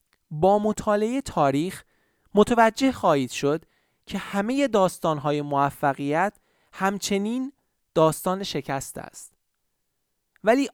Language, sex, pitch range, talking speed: Persian, male, 145-195 Hz, 85 wpm